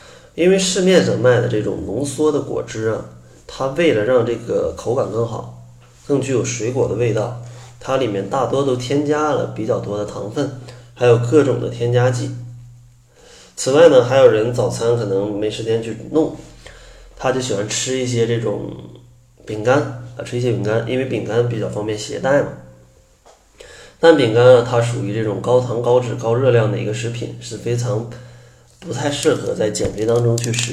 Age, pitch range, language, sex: 20-39, 110-125 Hz, Chinese, male